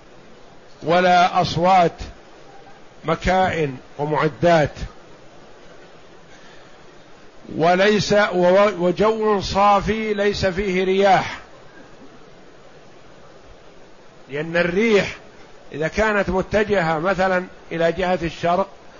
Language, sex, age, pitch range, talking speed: Arabic, male, 50-69, 175-215 Hz, 60 wpm